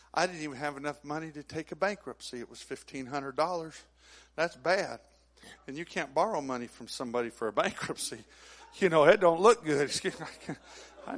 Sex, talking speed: male, 170 wpm